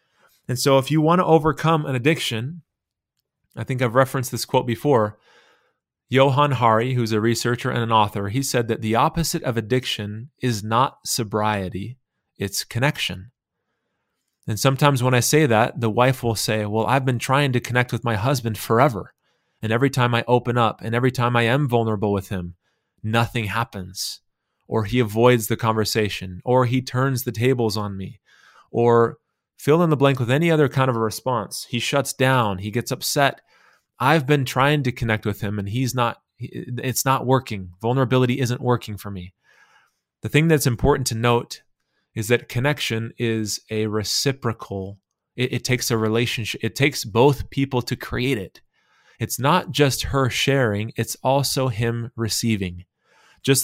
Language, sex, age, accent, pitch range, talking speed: English, male, 30-49, American, 110-135 Hz, 170 wpm